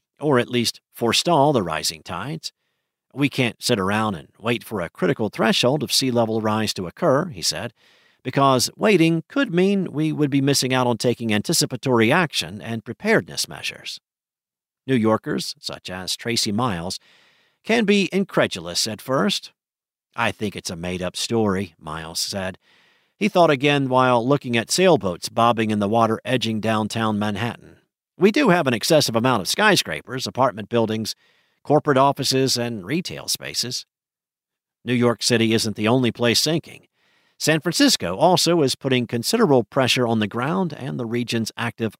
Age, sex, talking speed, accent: 50-69, male, 155 wpm, American